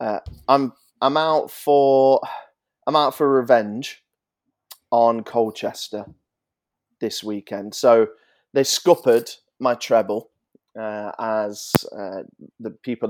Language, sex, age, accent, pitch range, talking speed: English, male, 30-49, British, 110-140 Hz, 105 wpm